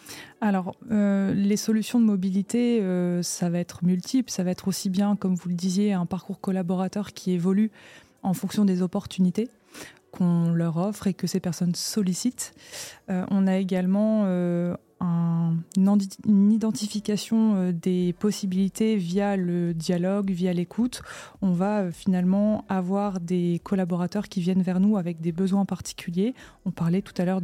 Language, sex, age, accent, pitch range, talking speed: French, female, 20-39, French, 180-210 Hz, 155 wpm